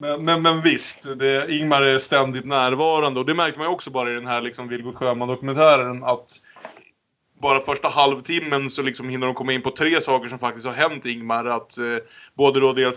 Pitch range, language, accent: 120-135 Hz, Swedish, Norwegian